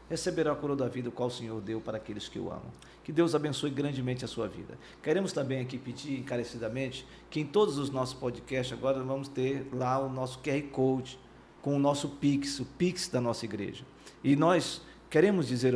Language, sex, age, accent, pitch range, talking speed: Portuguese, male, 50-69, Brazilian, 125-150 Hz, 205 wpm